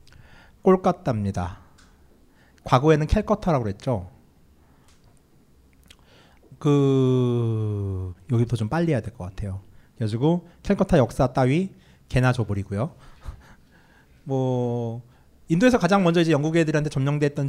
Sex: male